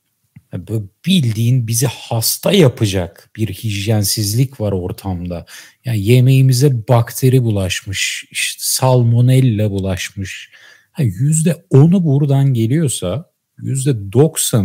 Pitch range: 115-150 Hz